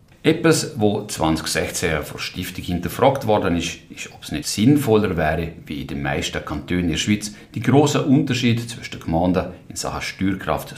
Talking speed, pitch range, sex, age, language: 175 wpm, 85-125 Hz, male, 60-79, German